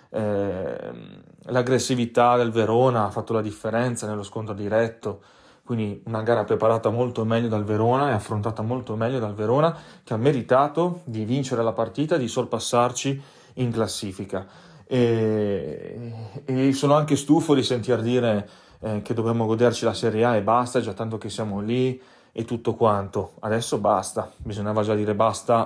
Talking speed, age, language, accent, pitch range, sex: 155 wpm, 30-49, Italian, native, 105-125 Hz, male